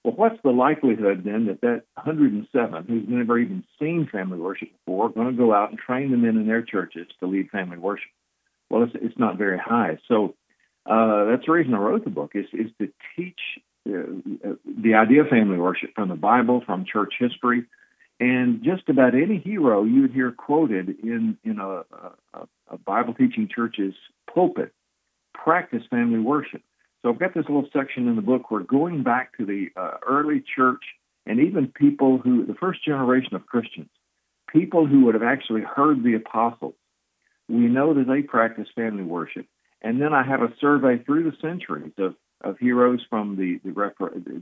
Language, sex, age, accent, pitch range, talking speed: English, male, 60-79, American, 110-145 Hz, 190 wpm